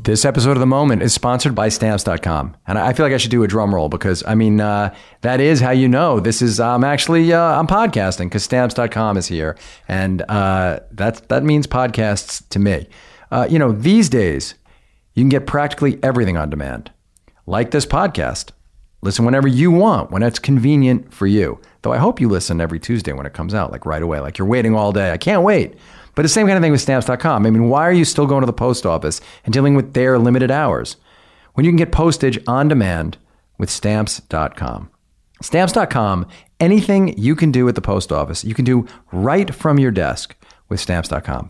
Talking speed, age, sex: 210 wpm, 40-59, male